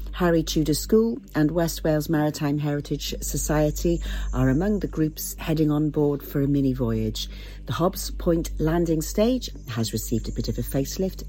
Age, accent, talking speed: 50-69, British, 170 wpm